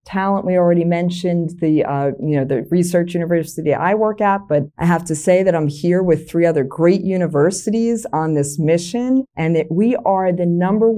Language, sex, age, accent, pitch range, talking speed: English, female, 40-59, American, 150-190 Hz, 195 wpm